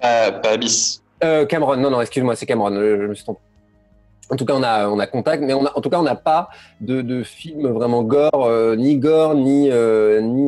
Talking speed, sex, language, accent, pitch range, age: 235 wpm, male, French, French, 110-150 Hz, 30-49